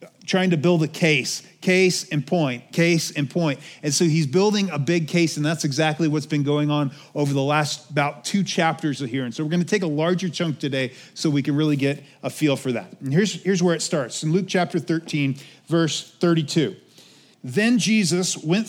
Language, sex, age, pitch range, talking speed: English, male, 40-59, 150-195 Hz, 215 wpm